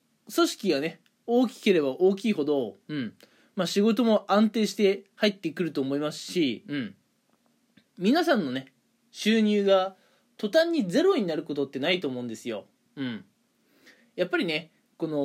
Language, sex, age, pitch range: Japanese, male, 20-39, 160-235 Hz